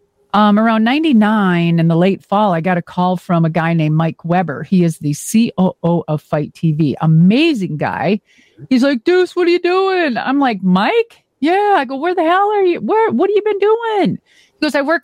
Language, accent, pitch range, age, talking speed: English, American, 175-265 Hz, 40-59, 215 wpm